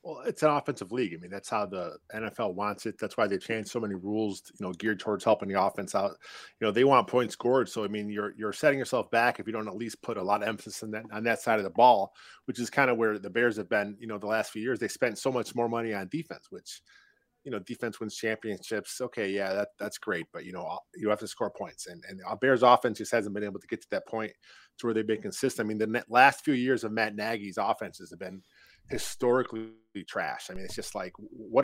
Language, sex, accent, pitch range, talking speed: English, male, American, 105-125 Hz, 265 wpm